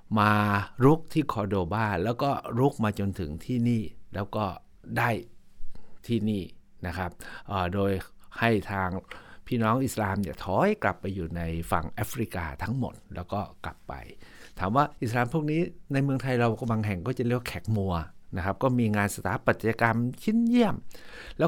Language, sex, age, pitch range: Thai, male, 60-79, 100-130 Hz